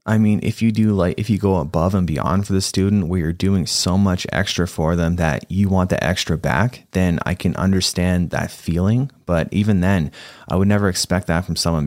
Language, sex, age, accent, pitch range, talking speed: English, male, 20-39, American, 85-95 Hz, 225 wpm